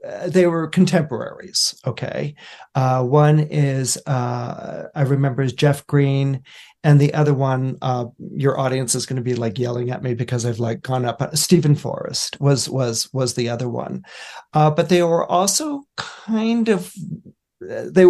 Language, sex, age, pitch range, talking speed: English, male, 40-59, 130-155 Hz, 155 wpm